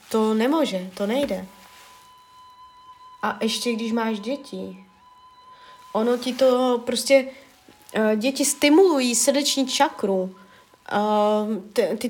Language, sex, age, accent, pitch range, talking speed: Czech, female, 20-39, native, 220-285 Hz, 90 wpm